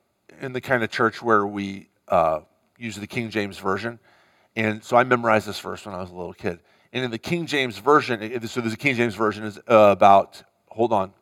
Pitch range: 105-135 Hz